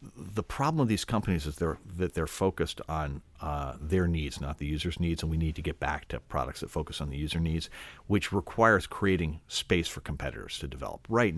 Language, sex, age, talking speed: English, male, 50-69, 210 wpm